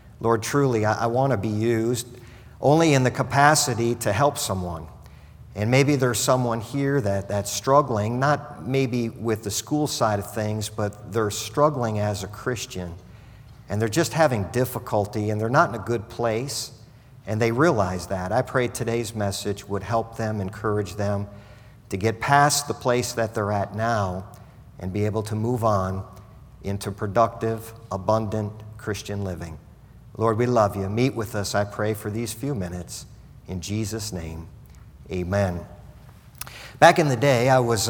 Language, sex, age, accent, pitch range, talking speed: English, male, 50-69, American, 105-120 Hz, 165 wpm